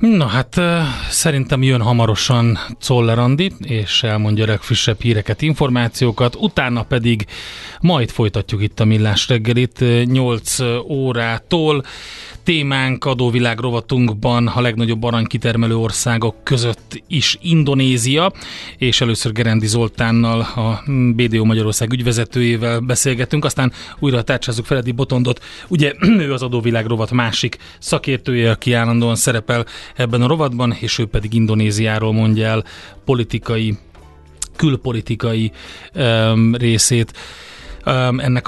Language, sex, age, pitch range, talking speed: Hungarian, male, 30-49, 110-130 Hz, 110 wpm